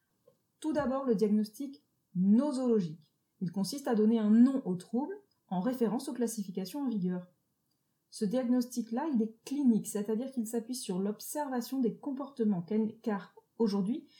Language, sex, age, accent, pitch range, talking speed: French, female, 30-49, French, 190-245 Hz, 140 wpm